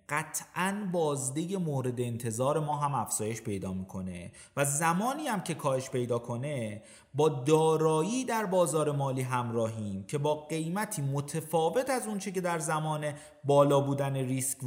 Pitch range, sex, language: 115-165 Hz, male, Persian